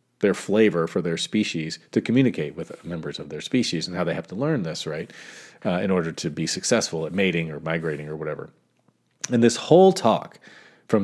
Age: 30-49